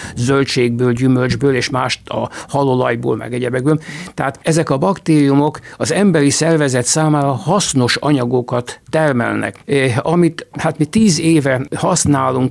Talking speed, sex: 125 wpm, male